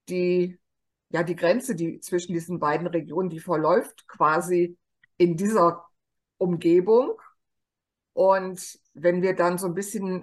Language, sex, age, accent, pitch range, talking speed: German, female, 50-69, German, 165-225 Hz, 130 wpm